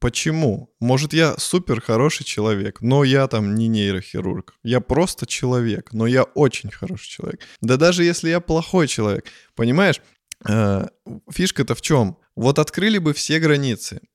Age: 20-39